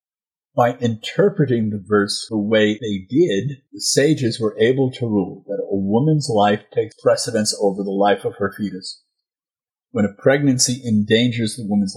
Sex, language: male, English